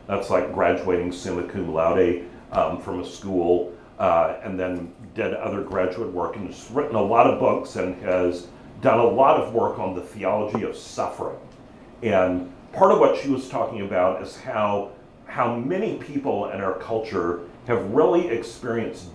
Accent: American